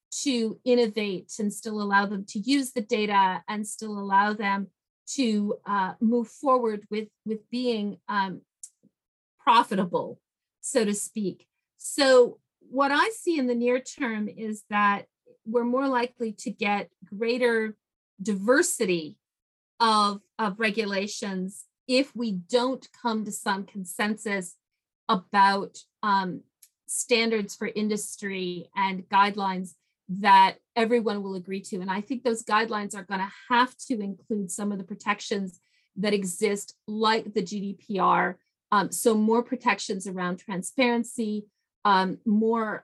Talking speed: 130 wpm